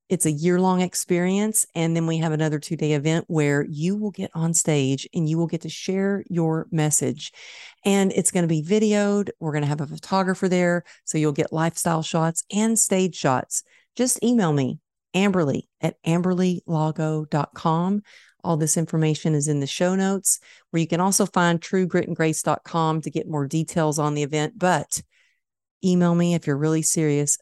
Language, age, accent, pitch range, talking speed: English, 50-69, American, 155-185 Hz, 175 wpm